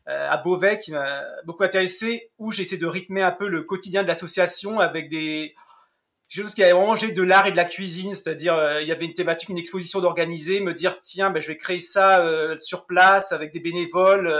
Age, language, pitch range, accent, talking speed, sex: 30-49, French, 165-195 Hz, French, 215 wpm, male